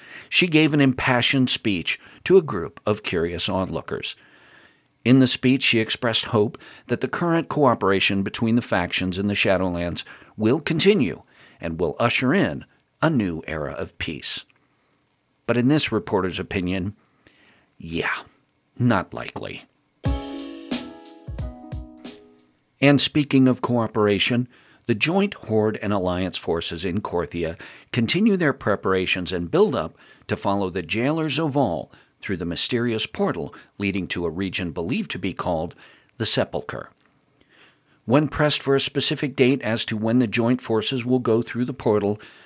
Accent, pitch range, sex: American, 95-130 Hz, male